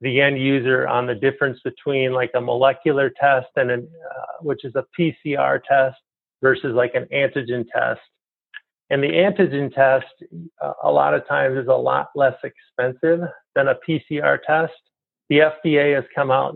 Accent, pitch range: American, 130-155 Hz